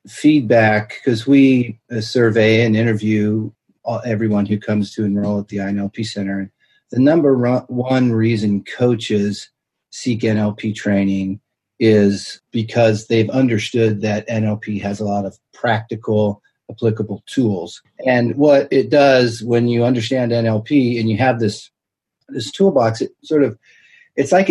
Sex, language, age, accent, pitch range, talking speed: male, English, 40-59, American, 110-130 Hz, 135 wpm